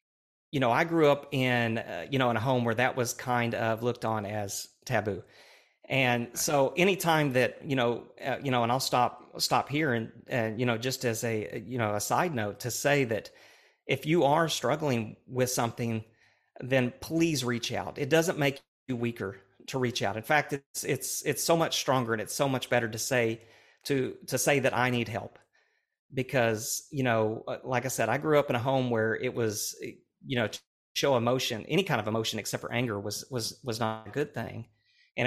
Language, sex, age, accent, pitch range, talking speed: English, male, 40-59, American, 110-130 Hz, 215 wpm